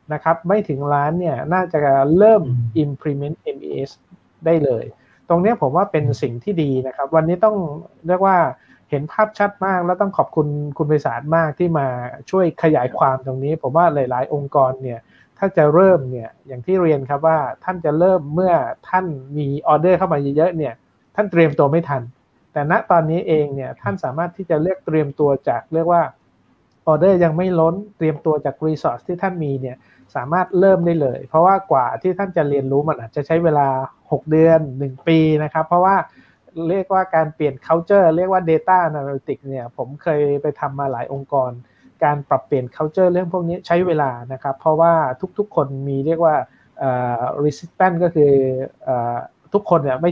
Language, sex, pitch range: Thai, male, 140-180 Hz